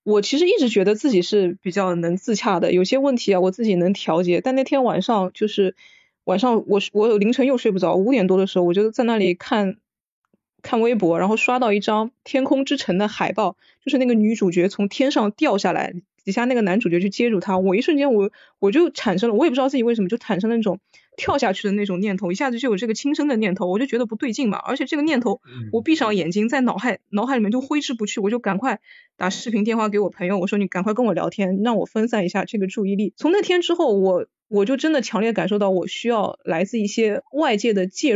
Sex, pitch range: female, 195-250 Hz